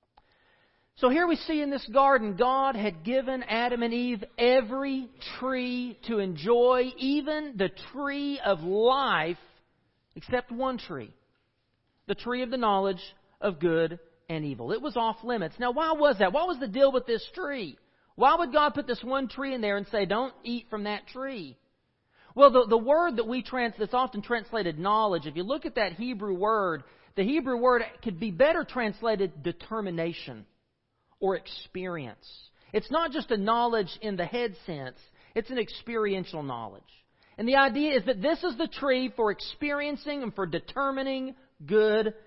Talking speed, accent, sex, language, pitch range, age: 170 wpm, American, male, English, 170-260 Hz, 40-59